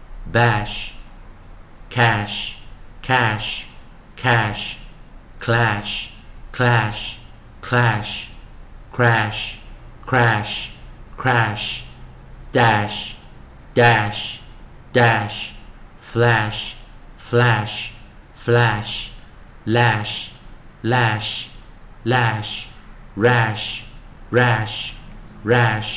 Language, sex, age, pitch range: Chinese, male, 50-69, 105-120 Hz